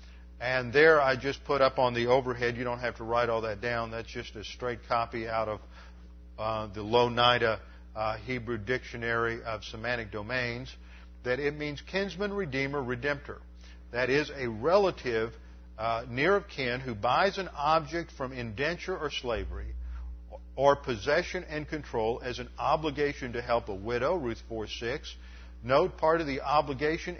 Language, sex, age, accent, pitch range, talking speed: English, male, 50-69, American, 110-155 Hz, 160 wpm